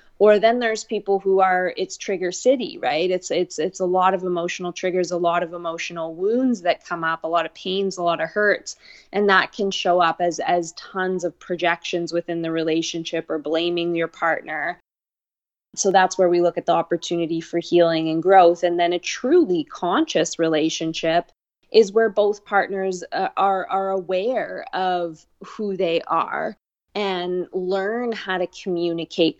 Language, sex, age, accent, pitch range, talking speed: English, female, 20-39, American, 165-195 Hz, 175 wpm